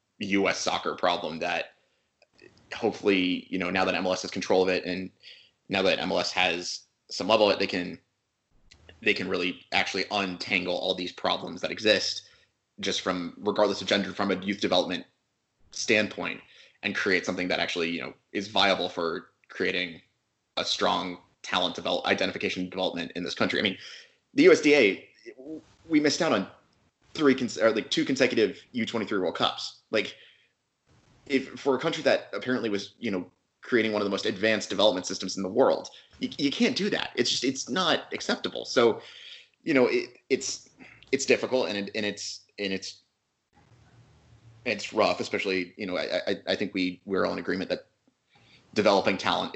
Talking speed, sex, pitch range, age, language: 175 wpm, male, 90-115 Hz, 20-39, English